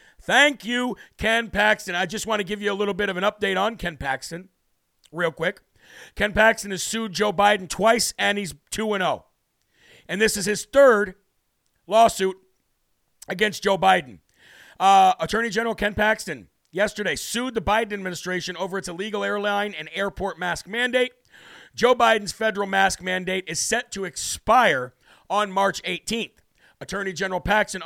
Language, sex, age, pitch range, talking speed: English, male, 50-69, 180-220 Hz, 155 wpm